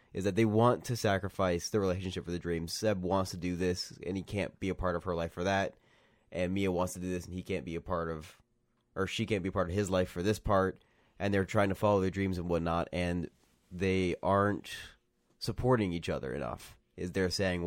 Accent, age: American, 20-39